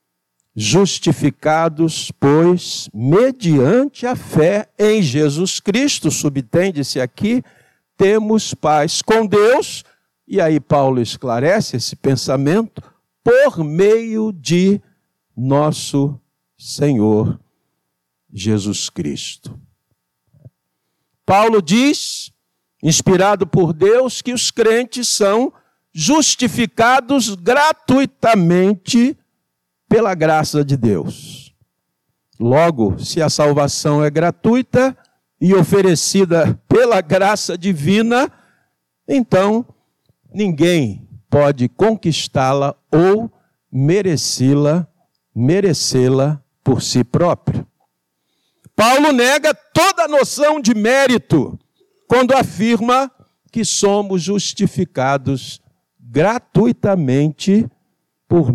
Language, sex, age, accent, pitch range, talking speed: Portuguese, male, 60-79, Brazilian, 140-215 Hz, 80 wpm